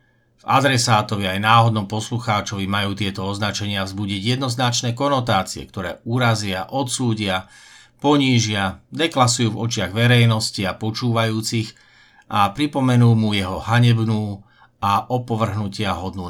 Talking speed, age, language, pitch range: 105 wpm, 50-69, Slovak, 100-120 Hz